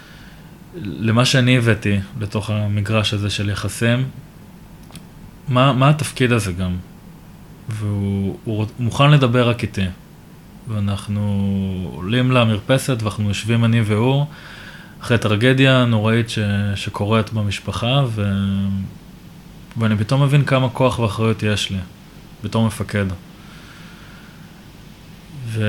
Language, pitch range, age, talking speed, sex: Hebrew, 105-125 Hz, 20-39, 105 wpm, male